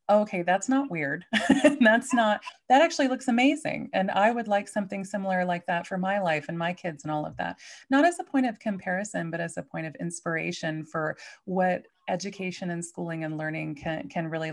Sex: female